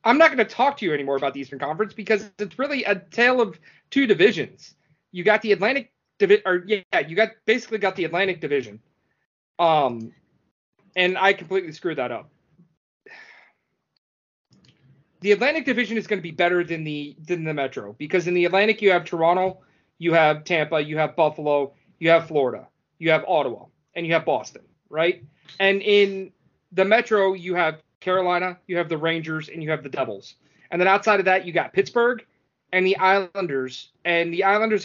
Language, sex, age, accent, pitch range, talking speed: English, male, 30-49, American, 165-210 Hz, 185 wpm